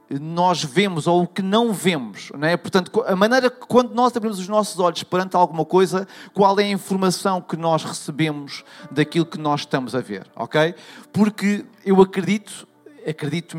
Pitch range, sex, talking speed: 150-200 Hz, male, 165 wpm